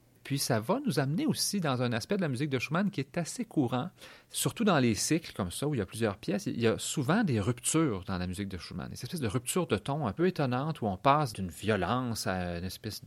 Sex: male